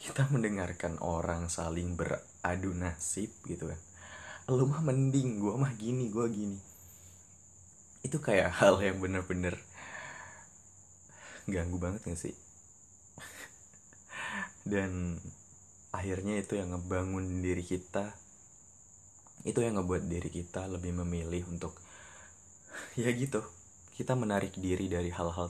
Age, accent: 20-39, native